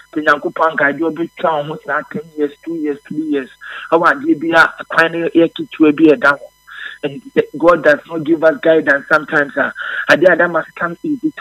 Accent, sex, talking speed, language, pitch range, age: Nigerian, male, 80 wpm, English, 145-200 Hz, 50-69